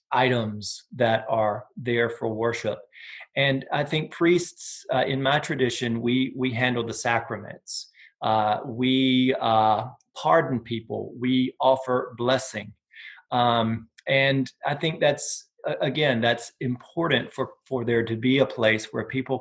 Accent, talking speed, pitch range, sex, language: American, 140 wpm, 115-135 Hz, male, English